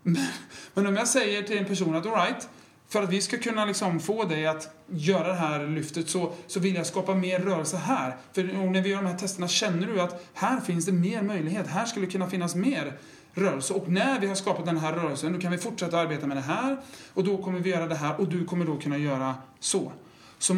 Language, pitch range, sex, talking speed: Swedish, 155-195 Hz, male, 245 wpm